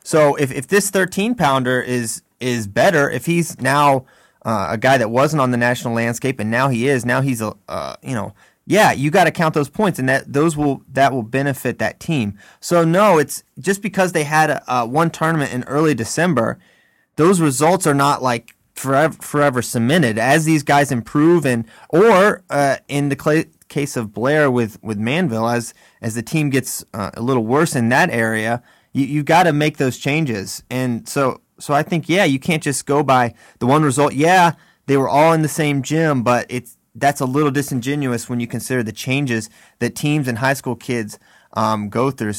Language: English